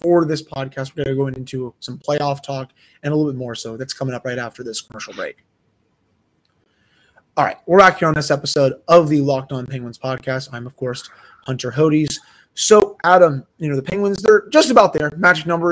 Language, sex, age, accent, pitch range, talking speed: English, male, 20-39, American, 135-190 Hz, 215 wpm